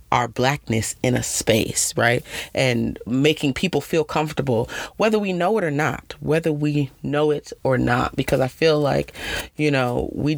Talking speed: 175 wpm